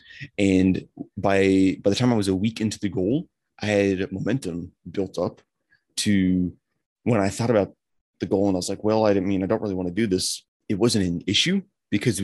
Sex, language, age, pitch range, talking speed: male, English, 30-49, 90-105 Hz, 220 wpm